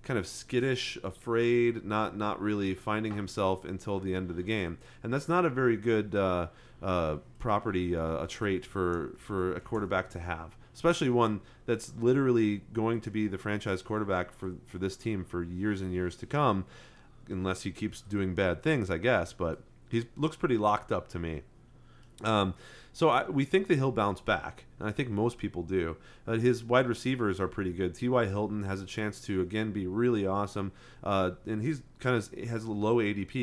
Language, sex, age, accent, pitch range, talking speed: English, male, 30-49, American, 95-120 Hz, 195 wpm